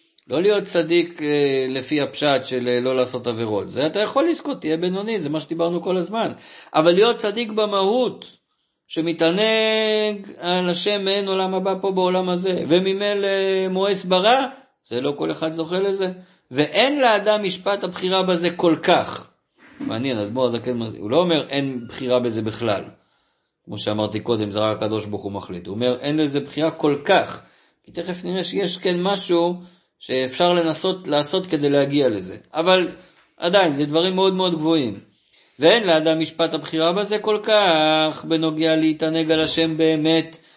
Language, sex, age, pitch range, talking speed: Hebrew, male, 50-69, 140-190 Hz, 155 wpm